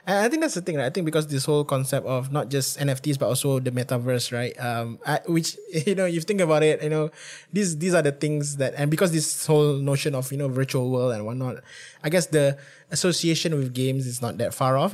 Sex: male